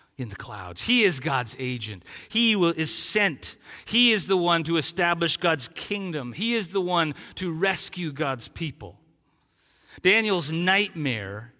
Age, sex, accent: 40-59, male, American